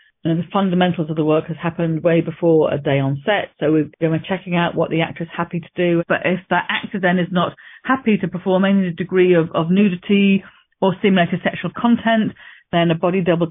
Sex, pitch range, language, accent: female, 155-180 Hz, English, British